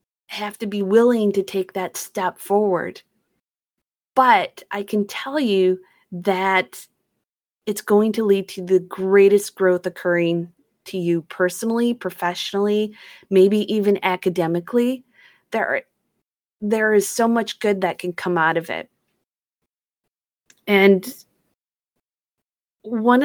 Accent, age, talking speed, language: American, 30-49, 115 wpm, English